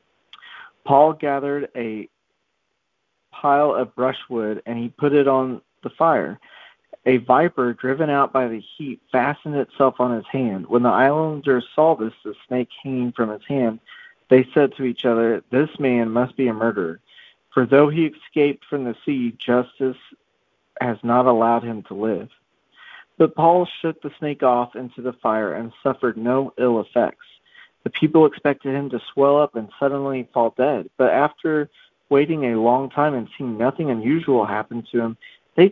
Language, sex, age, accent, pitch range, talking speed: English, male, 40-59, American, 120-145 Hz, 170 wpm